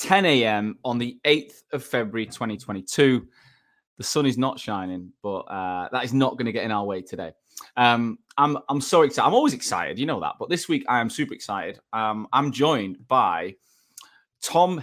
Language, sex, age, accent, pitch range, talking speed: English, male, 20-39, British, 105-140 Hz, 195 wpm